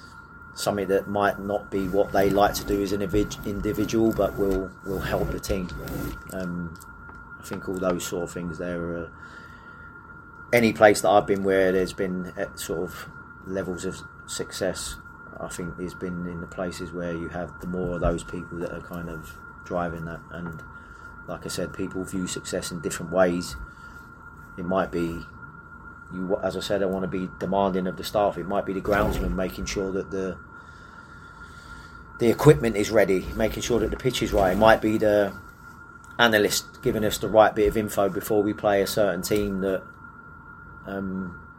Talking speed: 190 wpm